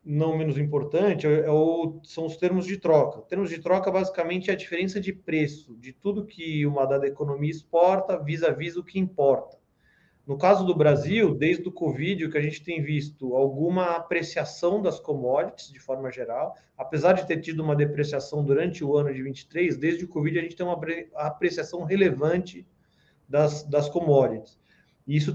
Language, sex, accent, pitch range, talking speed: Portuguese, male, Brazilian, 140-175 Hz, 175 wpm